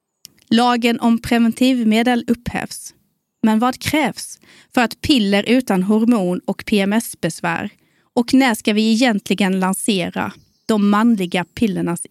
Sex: female